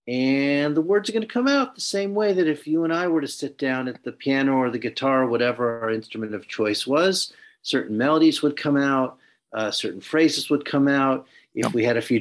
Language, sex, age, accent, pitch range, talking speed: English, male, 40-59, American, 120-155 Hz, 240 wpm